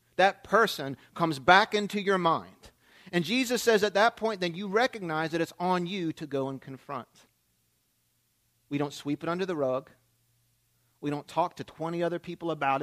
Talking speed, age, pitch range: 180 wpm, 40-59, 130-185 Hz